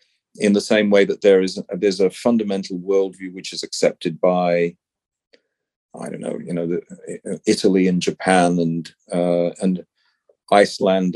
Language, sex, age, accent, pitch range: Chinese, male, 40-59, British, 90-115 Hz